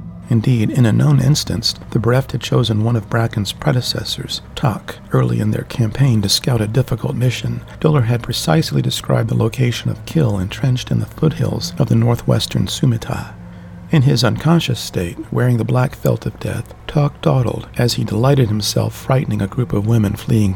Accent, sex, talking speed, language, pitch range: American, male, 180 wpm, English, 110-130 Hz